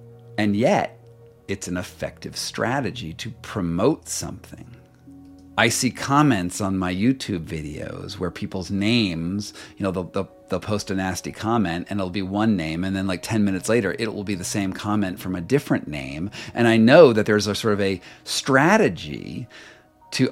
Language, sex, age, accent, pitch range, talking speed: English, male, 40-59, American, 90-115 Hz, 175 wpm